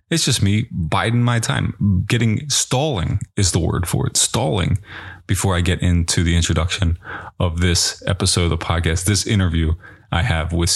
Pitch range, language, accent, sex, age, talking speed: 85-100 Hz, English, American, male, 20-39, 175 wpm